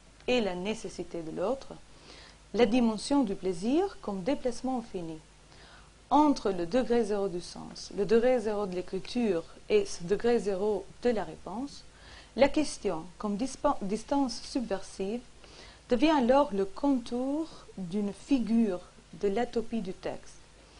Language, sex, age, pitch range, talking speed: French, female, 40-59, 195-260 Hz, 135 wpm